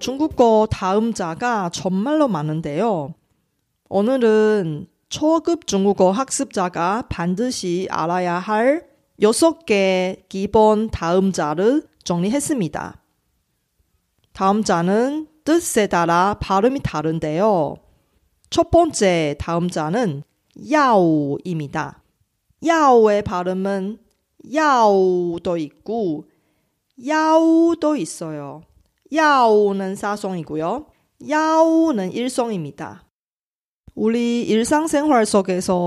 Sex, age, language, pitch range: female, 40-59, Korean, 180-265 Hz